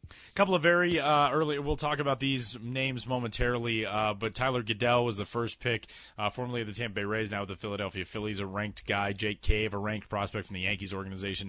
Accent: American